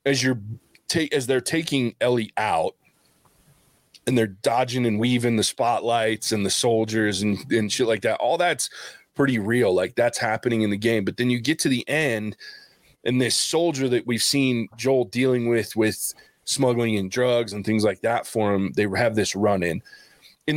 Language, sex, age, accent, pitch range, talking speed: English, male, 20-39, American, 110-135 Hz, 185 wpm